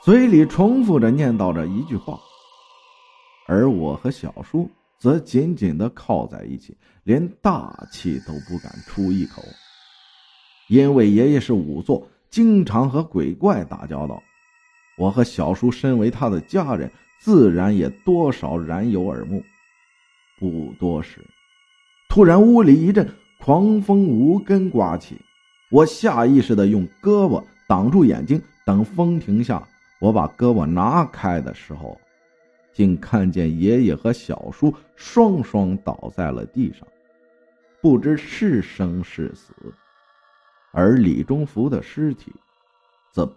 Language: Chinese